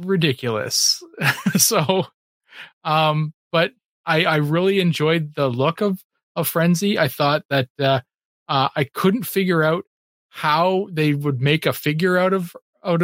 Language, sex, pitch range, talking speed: English, male, 150-190 Hz, 145 wpm